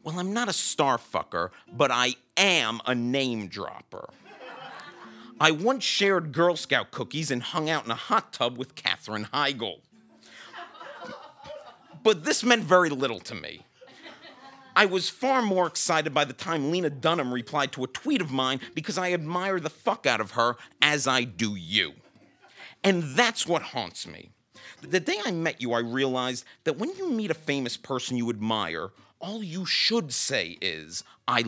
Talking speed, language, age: 170 wpm, English, 50-69